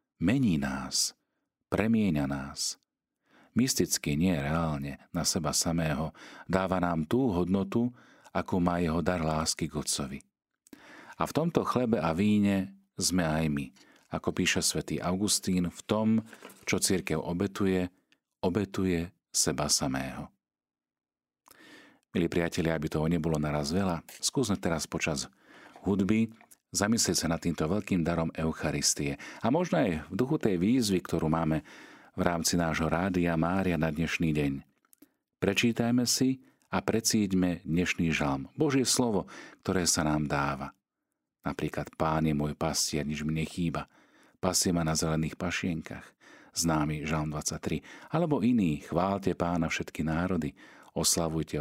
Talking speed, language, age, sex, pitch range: 130 wpm, Slovak, 40-59, male, 75-95 Hz